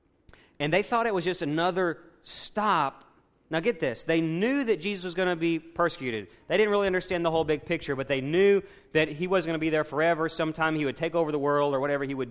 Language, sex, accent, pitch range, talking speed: English, male, American, 145-190 Hz, 245 wpm